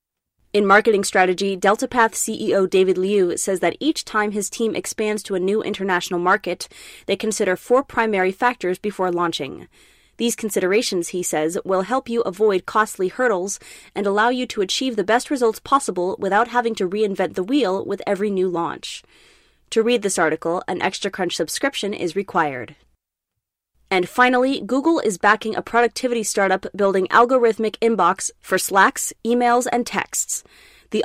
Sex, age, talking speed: female, 20-39, 160 wpm